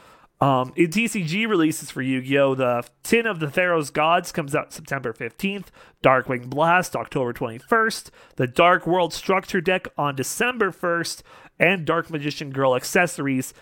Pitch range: 135-185 Hz